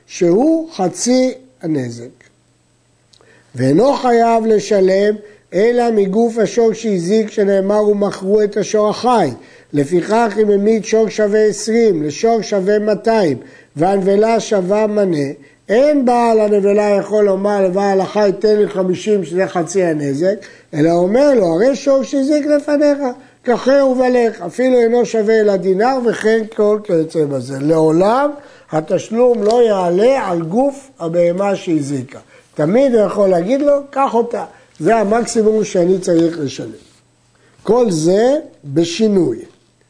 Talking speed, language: 120 wpm, Hebrew